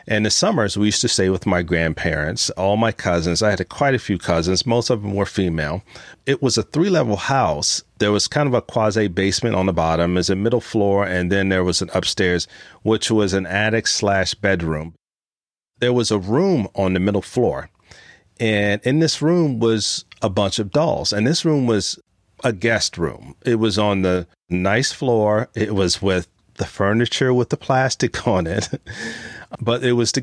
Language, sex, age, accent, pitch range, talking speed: English, male, 40-59, American, 95-120 Hz, 195 wpm